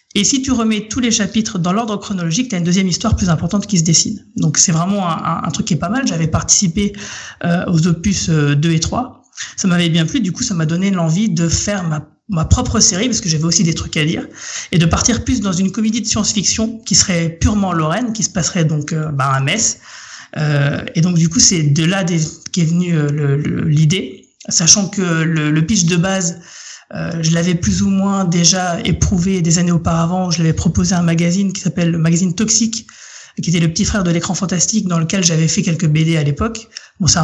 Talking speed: 235 wpm